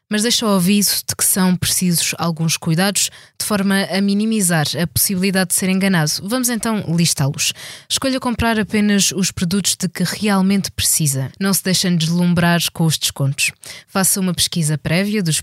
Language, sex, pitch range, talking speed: Portuguese, female, 155-195 Hz, 165 wpm